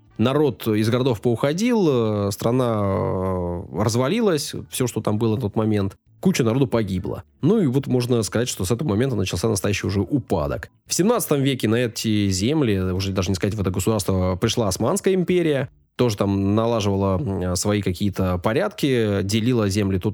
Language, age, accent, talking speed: Russian, 20-39, native, 160 wpm